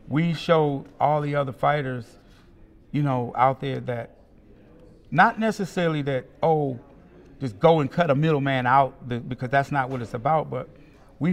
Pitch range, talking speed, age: 120-140 Hz, 160 wpm, 50-69